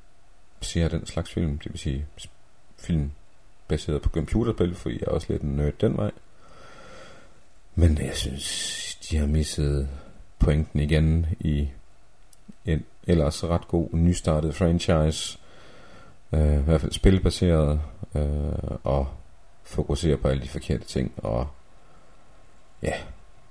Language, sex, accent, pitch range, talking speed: Danish, male, native, 70-85 Hz, 125 wpm